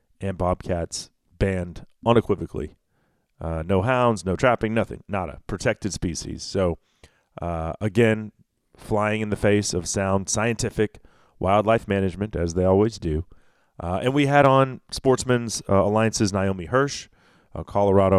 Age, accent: 40-59, American